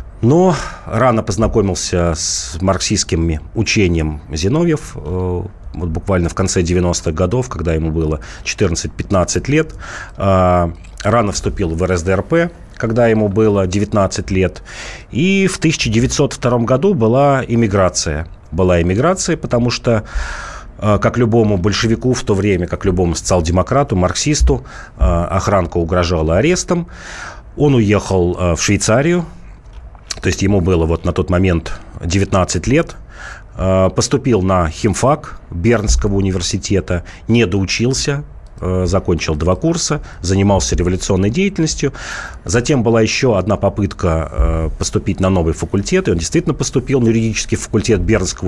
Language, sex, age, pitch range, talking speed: Russian, male, 40-59, 90-130 Hz, 115 wpm